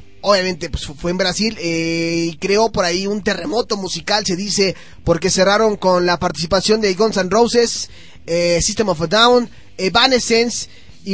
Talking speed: 165 wpm